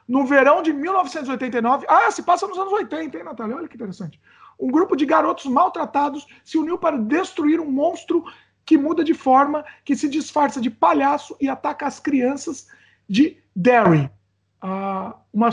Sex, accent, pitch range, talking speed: male, Brazilian, 220-300 Hz, 160 wpm